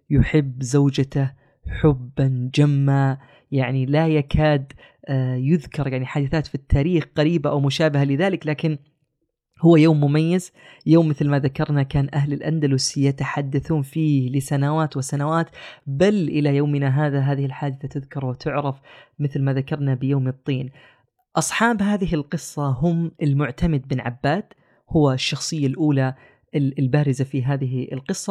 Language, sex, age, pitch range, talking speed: Arabic, female, 20-39, 135-155 Hz, 125 wpm